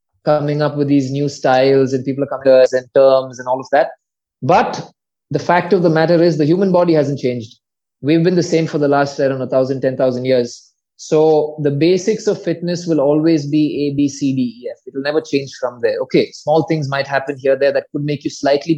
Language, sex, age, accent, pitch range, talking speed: English, male, 20-39, Indian, 140-170 Hz, 235 wpm